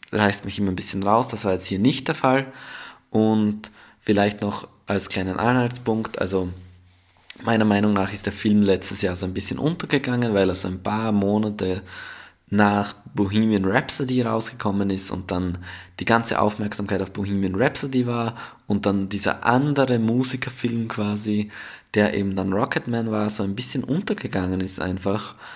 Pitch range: 95-115 Hz